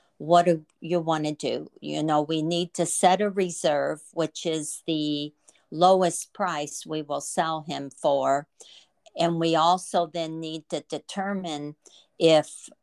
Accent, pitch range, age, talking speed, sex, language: American, 155-175 Hz, 50-69, 150 wpm, female, English